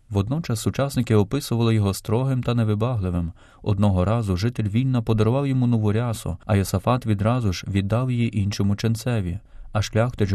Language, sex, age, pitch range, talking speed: Ukrainian, male, 20-39, 100-120 Hz, 145 wpm